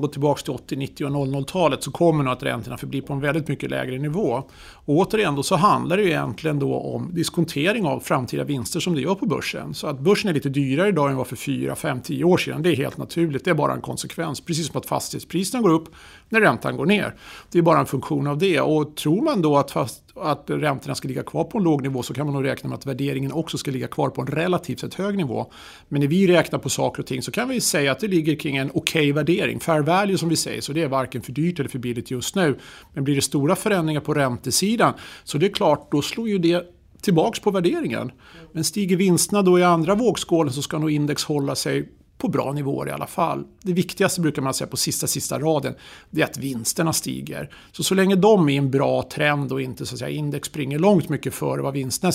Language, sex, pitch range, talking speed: Swedish, male, 140-175 Hz, 245 wpm